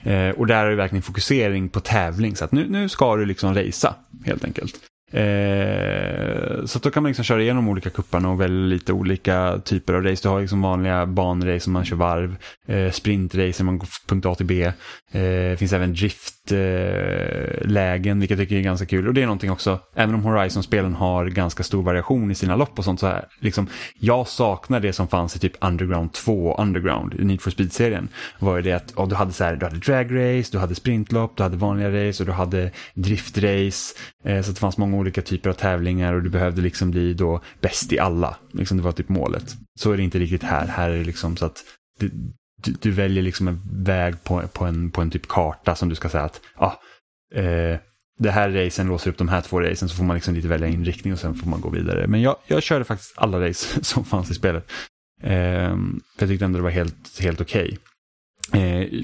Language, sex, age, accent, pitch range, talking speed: Swedish, male, 10-29, Norwegian, 90-105 Hz, 230 wpm